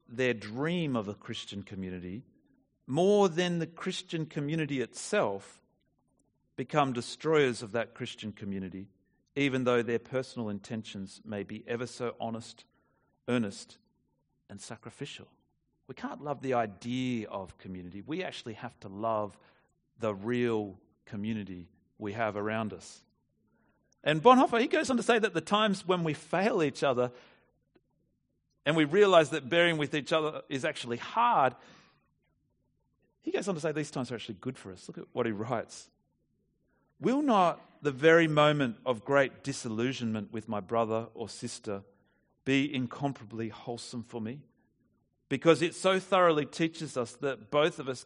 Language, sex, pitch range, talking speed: English, male, 115-155 Hz, 150 wpm